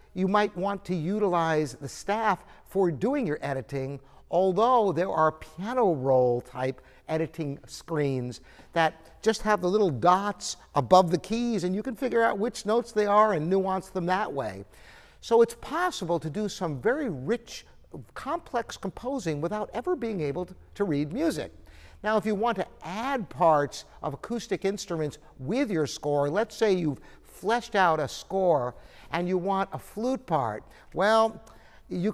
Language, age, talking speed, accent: English, 60-79, 160 wpm, American